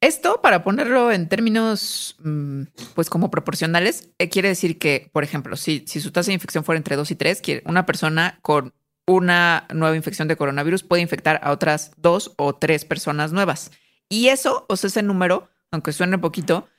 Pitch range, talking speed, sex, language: 155-190 Hz, 180 wpm, female, Spanish